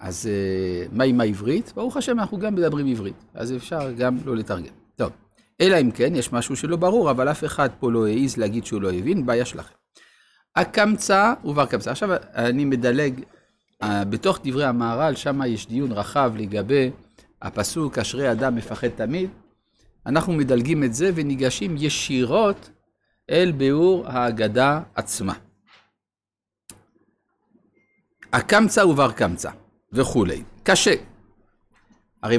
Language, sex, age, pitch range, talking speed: Hebrew, male, 50-69, 110-175 Hz, 130 wpm